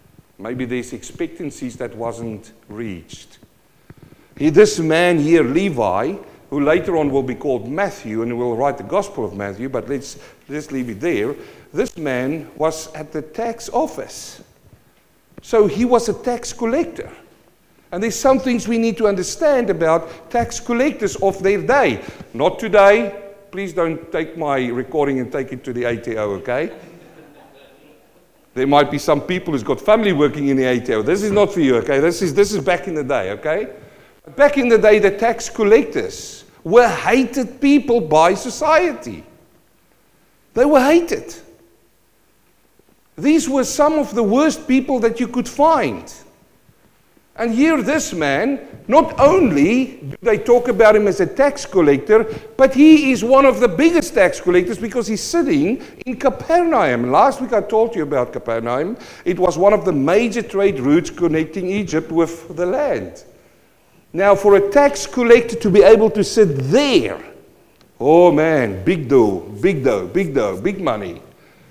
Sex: male